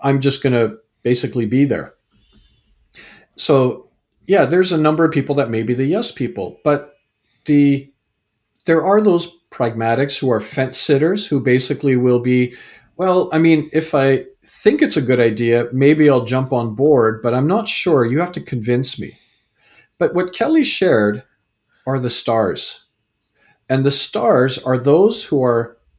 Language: English